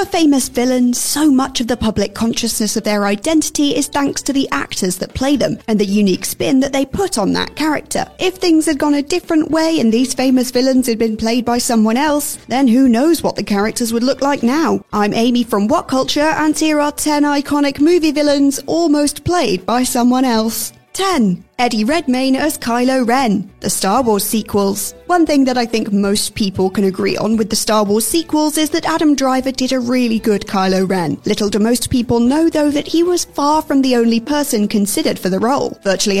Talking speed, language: 210 wpm, English